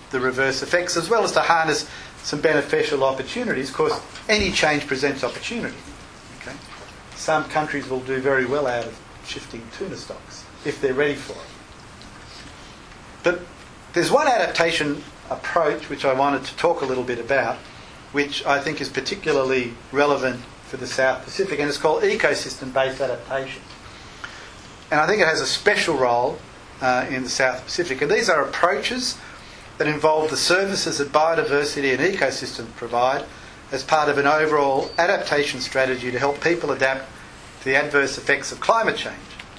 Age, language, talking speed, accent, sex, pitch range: 40-59, English, 160 wpm, Australian, male, 130-145 Hz